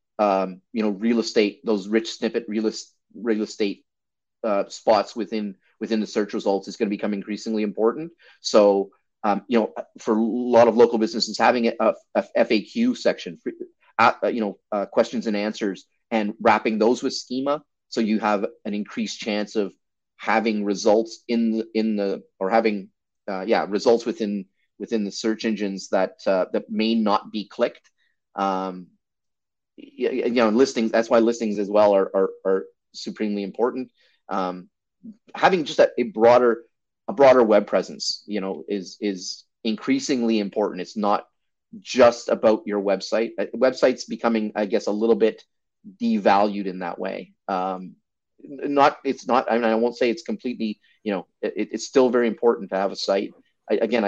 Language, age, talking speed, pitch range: English, 30-49, 170 wpm, 105-120 Hz